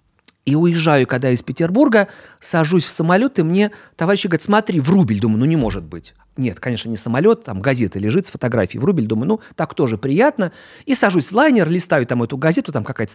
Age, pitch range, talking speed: 40-59, 110-175 Hz, 200 wpm